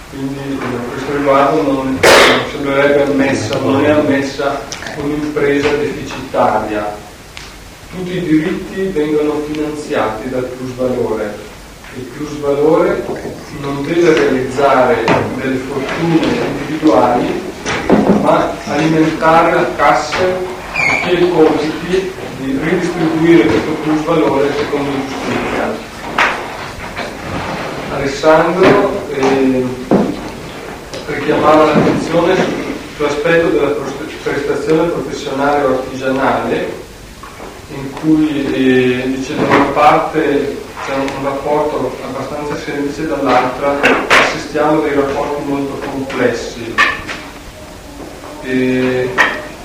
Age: 40-59